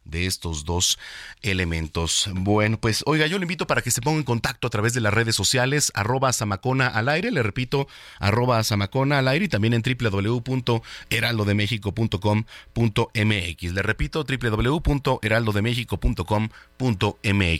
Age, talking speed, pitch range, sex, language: 40-59, 135 wpm, 105-130 Hz, male, Spanish